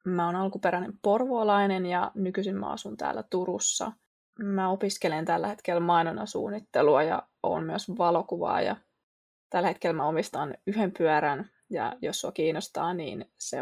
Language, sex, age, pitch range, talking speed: Finnish, female, 20-39, 175-210 Hz, 135 wpm